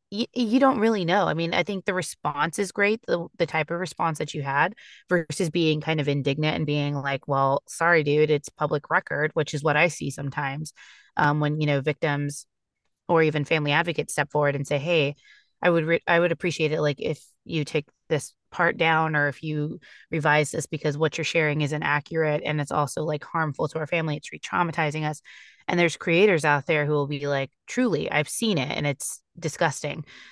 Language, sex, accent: English, female, American